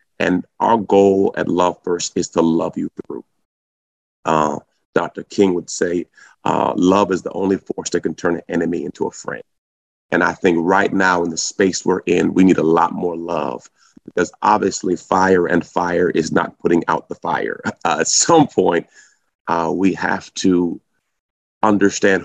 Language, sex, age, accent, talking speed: English, male, 30-49, American, 180 wpm